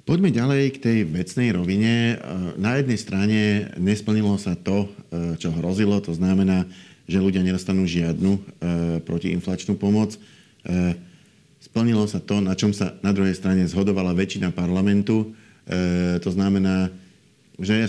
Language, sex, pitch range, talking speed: Slovak, male, 90-105 Hz, 125 wpm